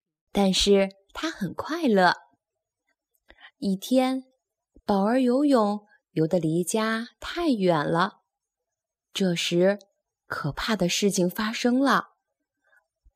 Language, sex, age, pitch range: Chinese, female, 10-29, 195-285 Hz